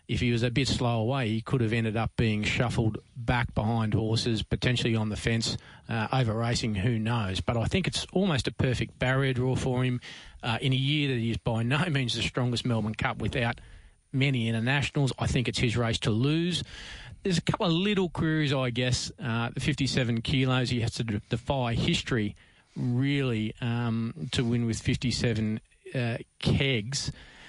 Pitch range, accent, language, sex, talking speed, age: 115-135 Hz, Australian, English, male, 185 wpm, 40-59